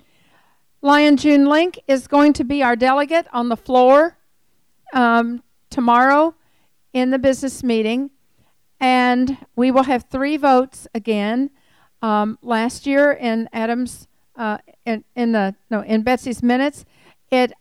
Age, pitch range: 50-69, 230-275 Hz